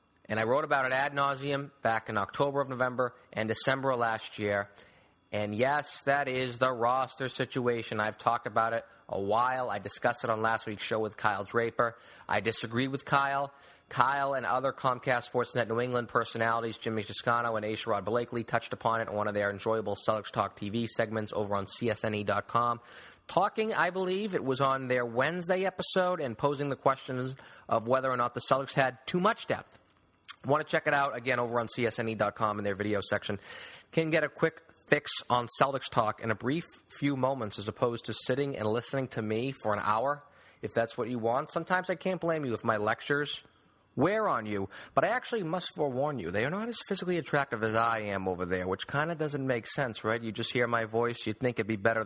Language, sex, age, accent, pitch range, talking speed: English, male, 30-49, American, 110-140 Hz, 210 wpm